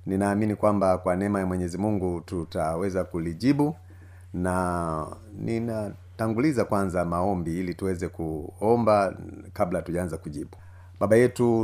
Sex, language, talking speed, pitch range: male, Swahili, 115 wpm, 90-105 Hz